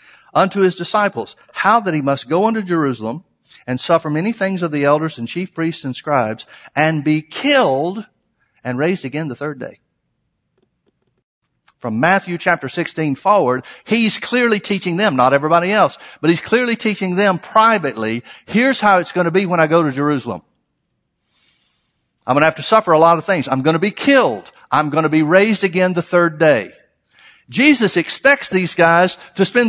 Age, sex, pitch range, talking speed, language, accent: 60-79, male, 155-210 Hz, 180 wpm, English, American